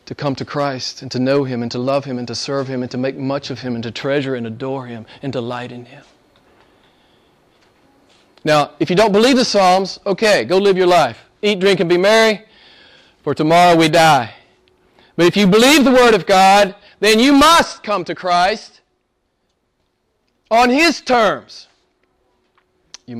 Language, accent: English, American